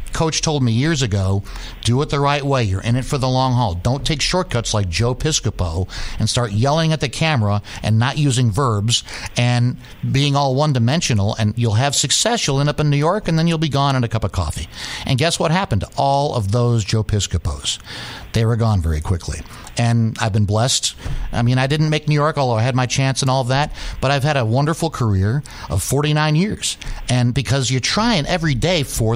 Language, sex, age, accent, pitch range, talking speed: English, male, 50-69, American, 110-150 Hz, 220 wpm